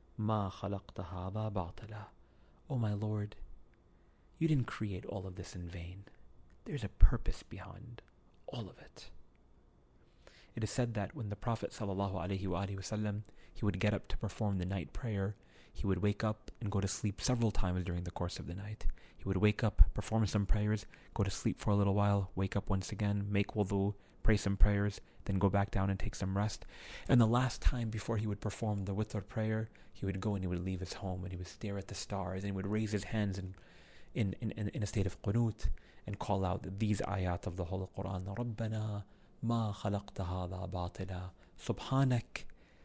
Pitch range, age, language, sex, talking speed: 95-110 Hz, 30-49, English, male, 195 wpm